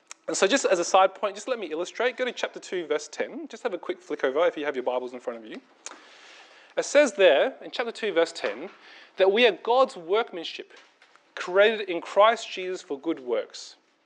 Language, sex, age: English, male, 30-49